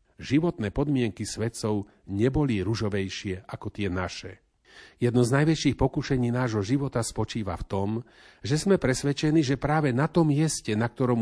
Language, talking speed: Slovak, 145 wpm